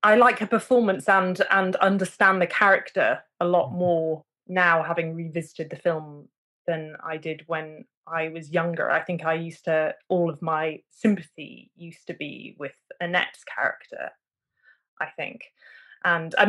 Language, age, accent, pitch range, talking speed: English, 20-39, British, 165-195 Hz, 155 wpm